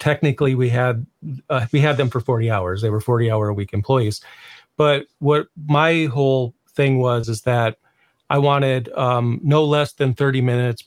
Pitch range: 120-140 Hz